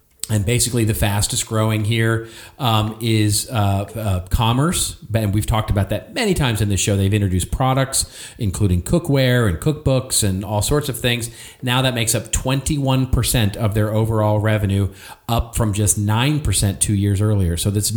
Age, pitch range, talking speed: 40-59, 100-130 Hz, 170 wpm